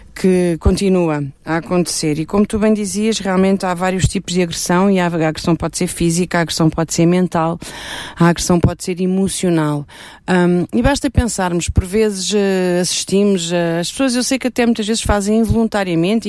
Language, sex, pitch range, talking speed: Portuguese, female, 190-250 Hz, 180 wpm